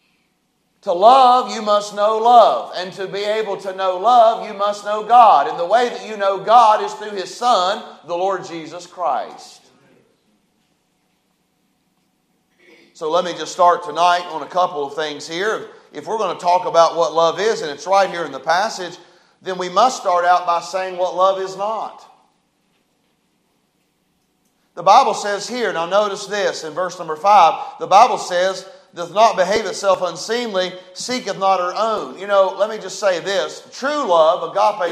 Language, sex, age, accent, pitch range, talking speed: English, male, 40-59, American, 175-210 Hz, 180 wpm